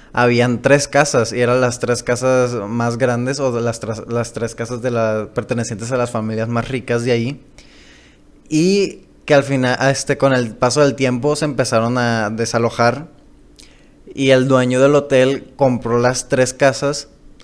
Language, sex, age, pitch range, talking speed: Spanish, male, 20-39, 115-135 Hz, 170 wpm